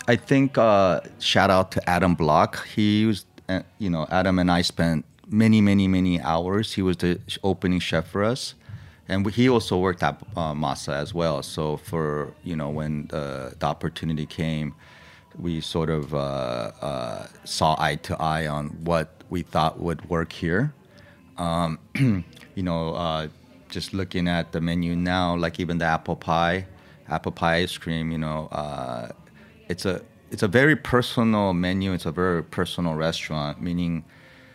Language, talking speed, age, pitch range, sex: English, 170 wpm, 30-49, 80-90 Hz, male